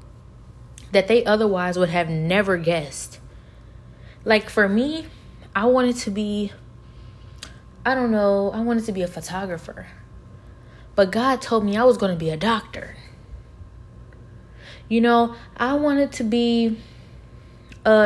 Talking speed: 135 wpm